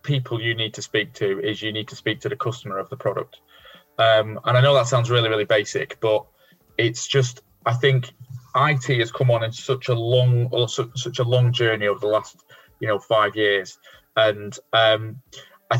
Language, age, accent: English, 20-39, British